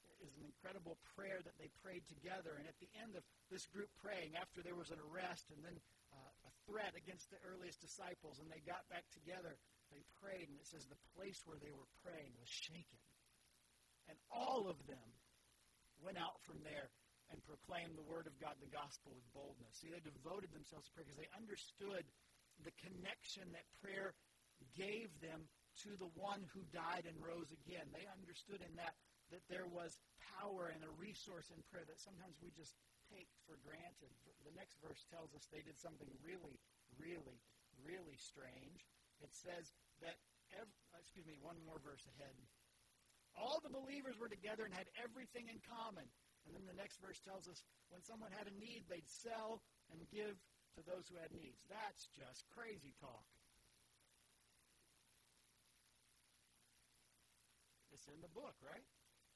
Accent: American